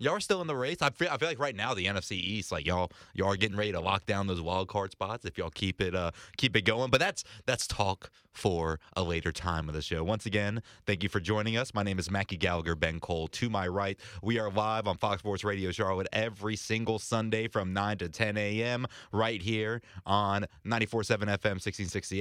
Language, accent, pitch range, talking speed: English, American, 95-110 Hz, 230 wpm